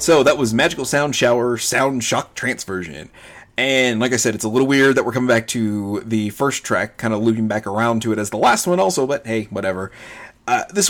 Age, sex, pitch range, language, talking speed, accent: 30-49, male, 105-130 Hz, English, 235 wpm, American